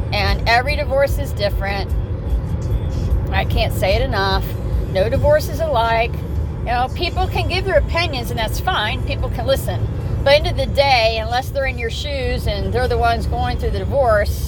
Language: English